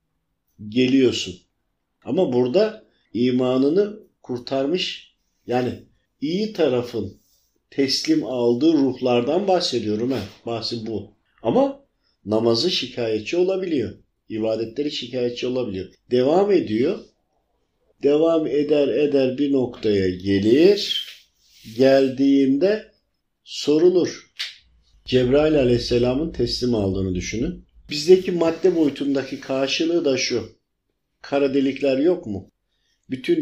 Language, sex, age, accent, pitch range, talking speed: Turkish, male, 50-69, native, 115-145 Hz, 85 wpm